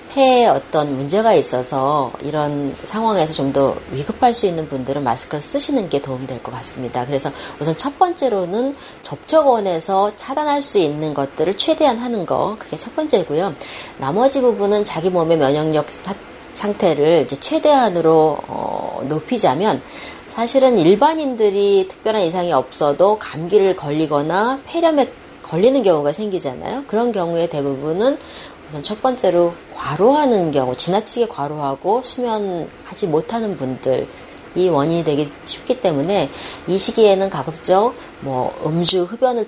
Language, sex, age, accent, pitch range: Korean, female, 30-49, native, 145-240 Hz